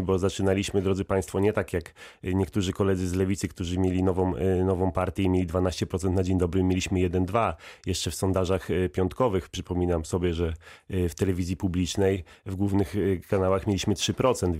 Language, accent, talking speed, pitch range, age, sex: Polish, native, 160 wpm, 95-105 Hz, 30-49, male